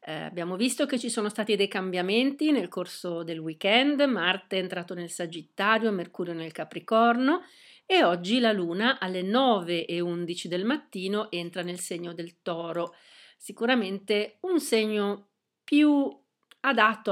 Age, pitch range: 40-59, 175-215 Hz